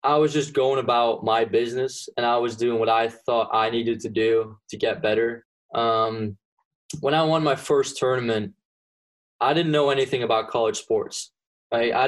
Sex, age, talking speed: male, 20-39, 180 wpm